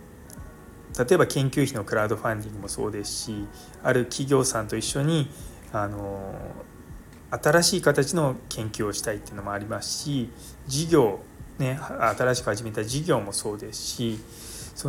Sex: male